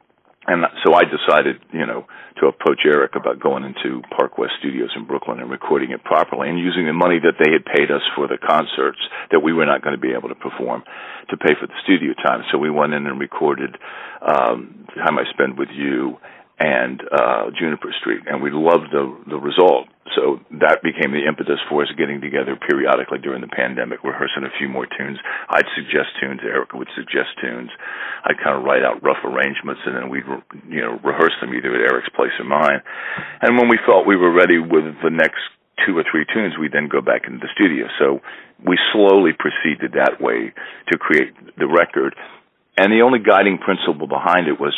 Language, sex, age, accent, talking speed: English, male, 50-69, American, 210 wpm